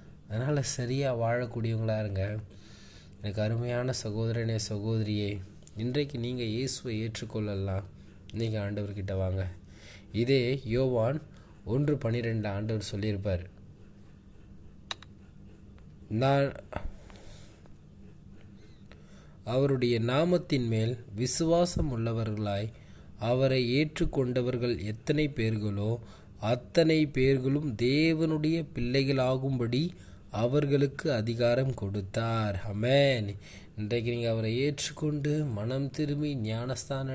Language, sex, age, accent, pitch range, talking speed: Tamil, male, 20-39, native, 105-135 Hz, 75 wpm